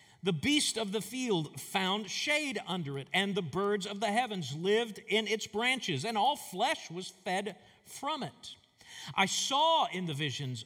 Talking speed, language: 175 wpm, English